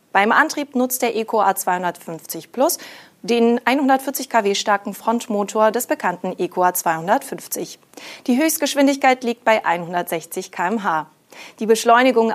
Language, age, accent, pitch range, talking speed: German, 30-49, German, 185-235 Hz, 115 wpm